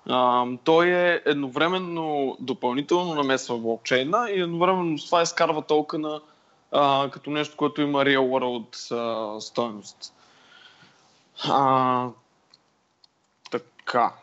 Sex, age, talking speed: male, 20-39, 100 wpm